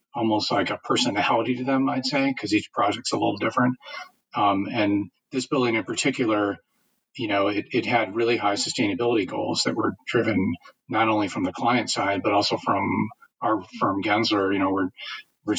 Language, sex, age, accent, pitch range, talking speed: English, male, 40-59, American, 100-120 Hz, 185 wpm